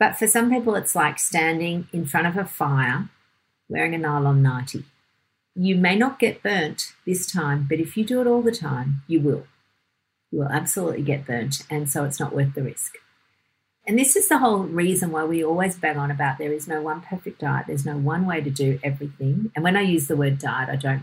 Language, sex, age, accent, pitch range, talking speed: English, female, 50-69, Australian, 140-185 Hz, 225 wpm